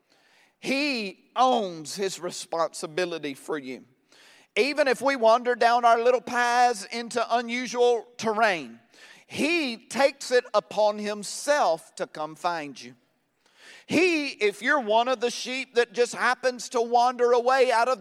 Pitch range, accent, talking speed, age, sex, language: 175-255 Hz, American, 135 wpm, 40-59, male, English